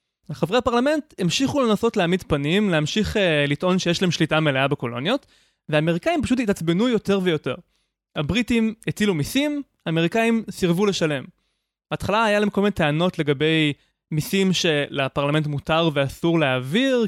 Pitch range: 145-205 Hz